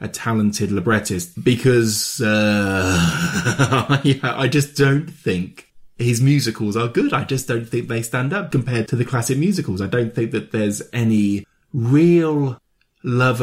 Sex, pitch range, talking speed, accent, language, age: male, 100-135 Hz, 150 wpm, British, English, 20-39